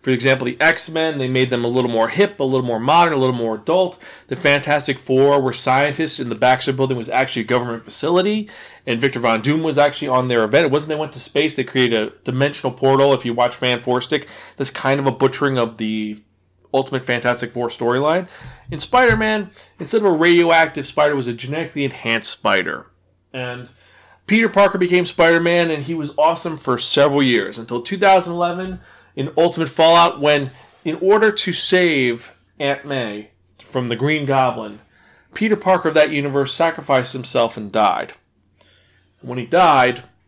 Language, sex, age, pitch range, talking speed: English, male, 30-49, 125-165 Hz, 180 wpm